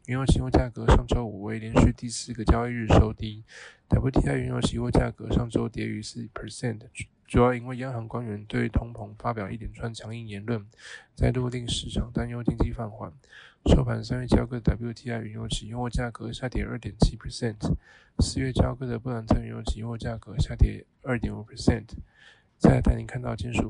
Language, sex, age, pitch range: Chinese, male, 20-39, 110-125 Hz